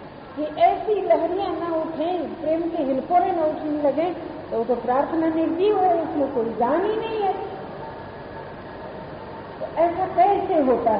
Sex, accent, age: female, native, 50-69